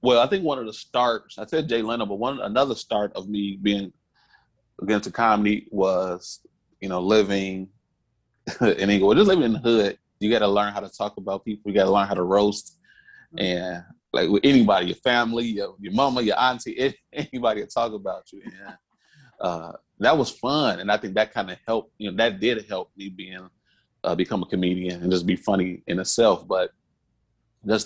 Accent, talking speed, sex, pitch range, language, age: American, 200 wpm, male, 95-110 Hz, English, 30-49